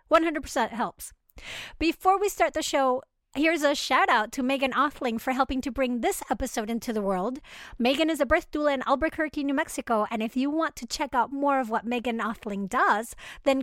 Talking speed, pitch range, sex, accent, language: 200 wpm, 255-315 Hz, female, American, English